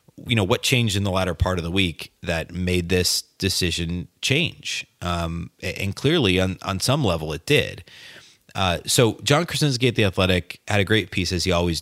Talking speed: 200 wpm